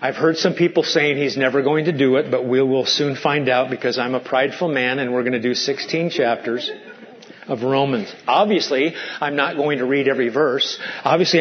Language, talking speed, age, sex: English, 210 wpm, 40-59, male